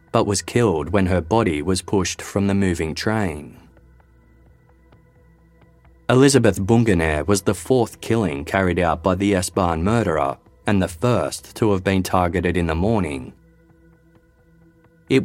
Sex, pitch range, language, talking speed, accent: male, 85-115 Hz, English, 140 wpm, Australian